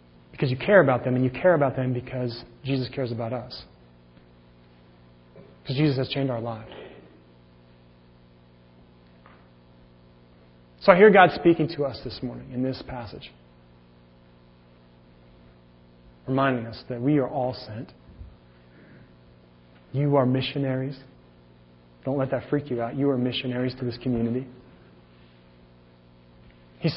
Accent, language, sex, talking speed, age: American, English, male, 125 wpm, 30-49